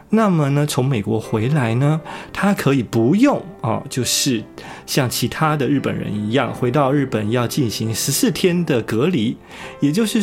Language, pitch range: Chinese, 115-165 Hz